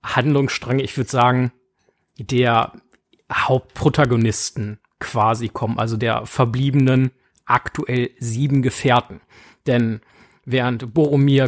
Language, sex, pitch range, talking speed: German, male, 120-140 Hz, 90 wpm